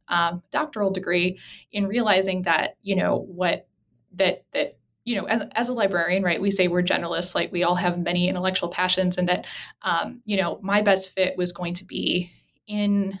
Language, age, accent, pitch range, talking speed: English, 10-29, American, 180-205 Hz, 190 wpm